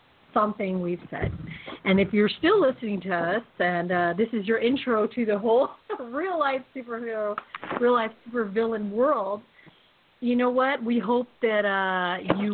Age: 40-59